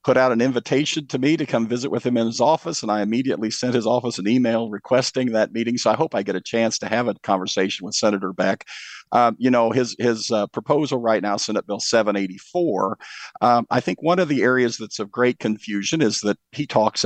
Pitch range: 105-125 Hz